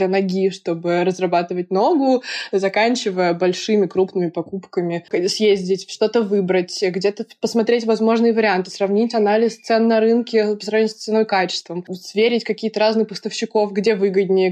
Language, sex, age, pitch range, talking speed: Russian, female, 20-39, 185-225 Hz, 135 wpm